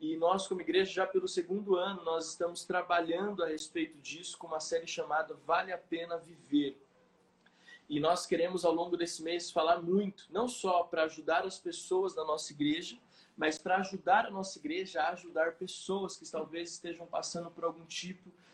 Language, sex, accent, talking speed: Portuguese, male, Brazilian, 180 wpm